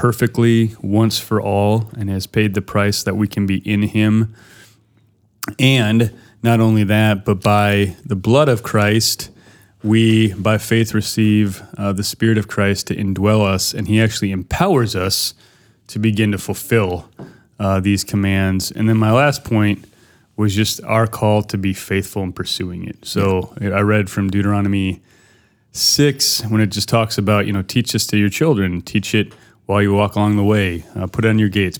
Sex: male